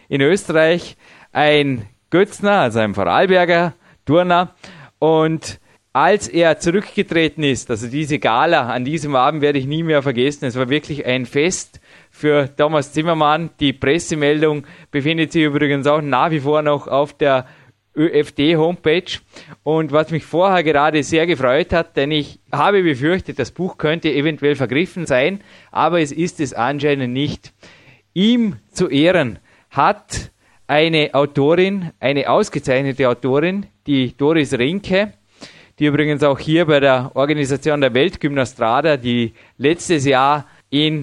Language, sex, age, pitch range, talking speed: German, male, 20-39, 135-160 Hz, 135 wpm